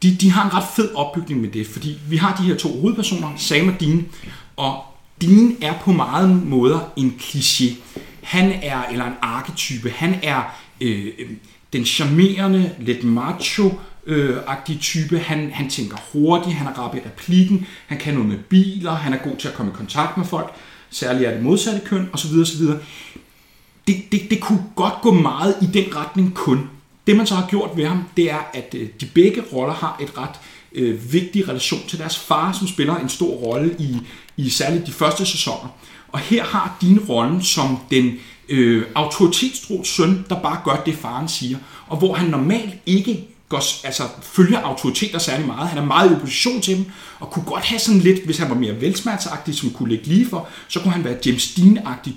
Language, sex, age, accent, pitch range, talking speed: Danish, male, 30-49, native, 130-185 Hz, 190 wpm